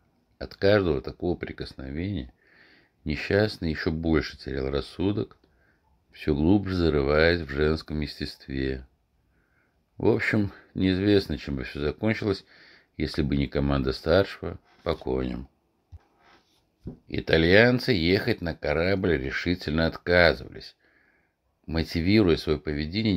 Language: Russian